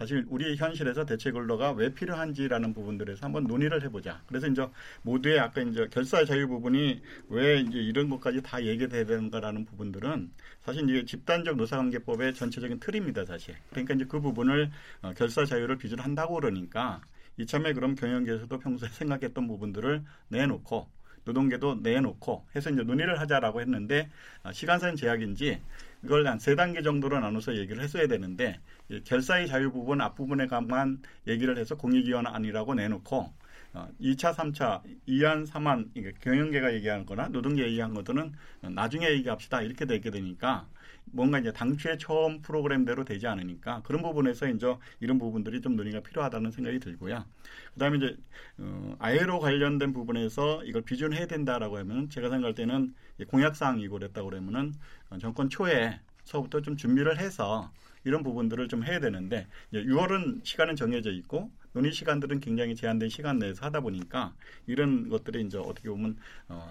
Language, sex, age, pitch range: Korean, male, 40-59, 115-150 Hz